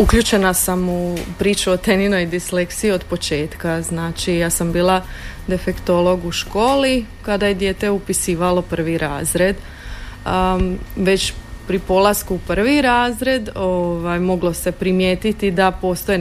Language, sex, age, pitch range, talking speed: Croatian, female, 30-49, 165-190 Hz, 130 wpm